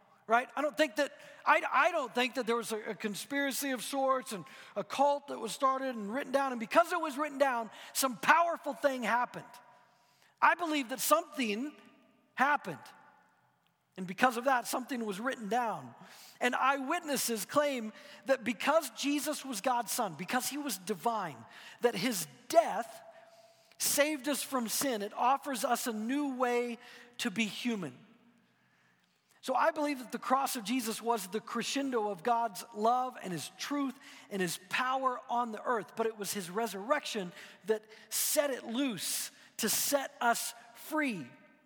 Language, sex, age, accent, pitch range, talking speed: English, male, 40-59, American, 215-275 Hz, 165 wpm